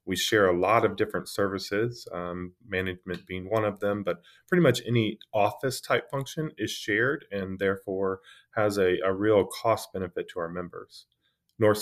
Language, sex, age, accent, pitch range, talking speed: English, male, 30-49, American, 95-120 Hz, 175 wpm